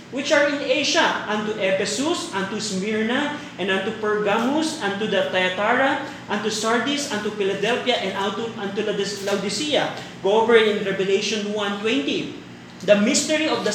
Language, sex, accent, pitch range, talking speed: Filipino, male, native, 210-255 Hz, 135 wpm